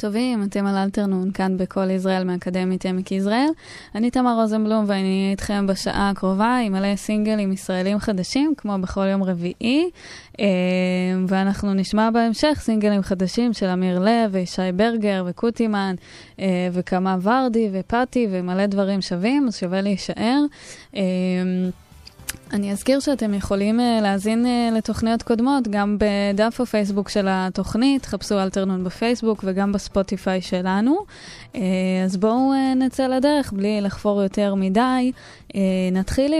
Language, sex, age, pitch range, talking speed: Hebrew, female, 10-29, 185-225 Hz, 120 wpm